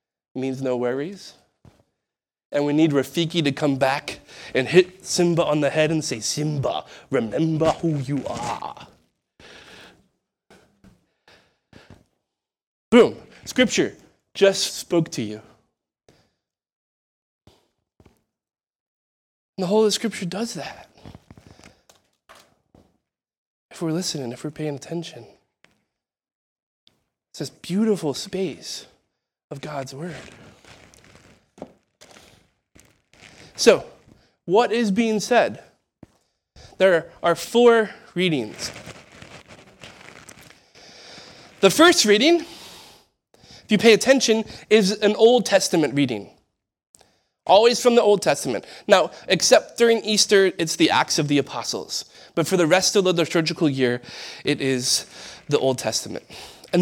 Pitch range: 140-205 Hz